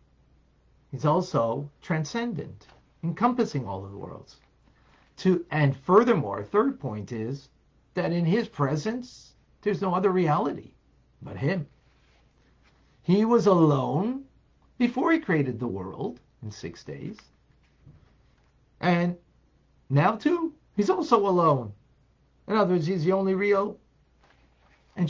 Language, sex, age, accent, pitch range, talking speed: English, male, 50-69, American, 115-175 Hz, 115 wpm